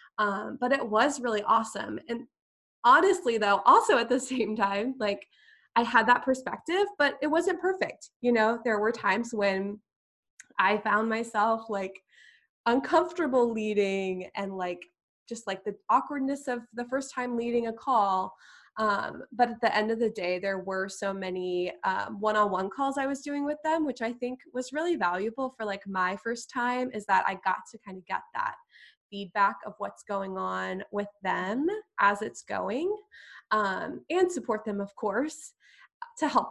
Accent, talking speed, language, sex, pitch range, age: American, 175 wpm, English, female, 200-250 Hz, 20-39